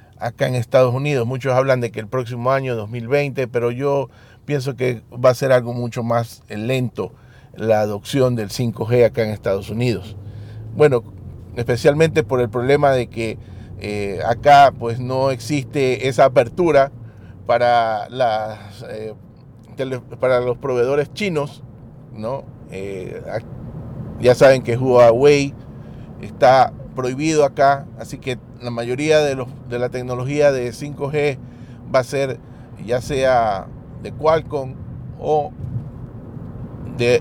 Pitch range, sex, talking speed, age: 115-135 Hz, male, 125 wpm, 40-59